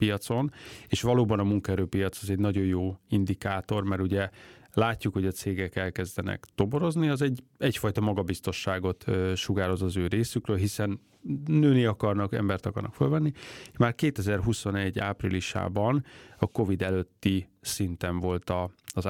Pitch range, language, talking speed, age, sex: 95-120 Hz, Hungarian, 130 wpm, 30-49, male